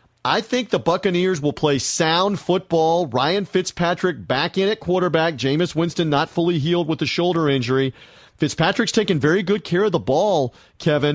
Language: English